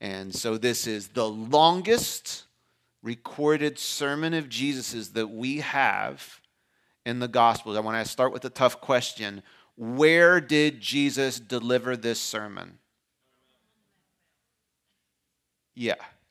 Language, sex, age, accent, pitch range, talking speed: English, male, 40-59, American, 115-155 Hz, 115 wpm